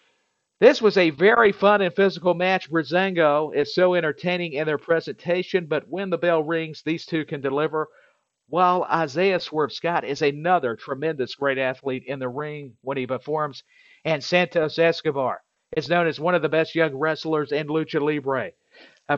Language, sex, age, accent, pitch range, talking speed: English, male, 50-69, American, 140-165 Hz, 170 wpm